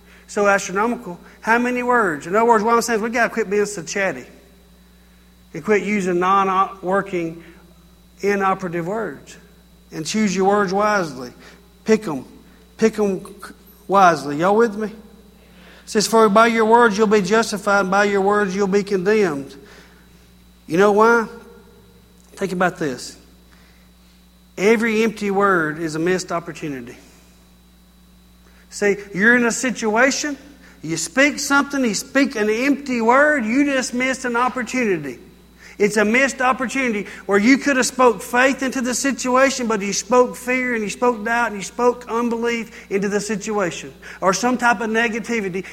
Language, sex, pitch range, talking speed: English, male, 175-235 Hz, 155 wpm